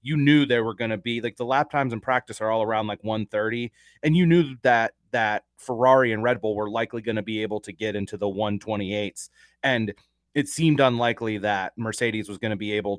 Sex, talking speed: male, 225 wpm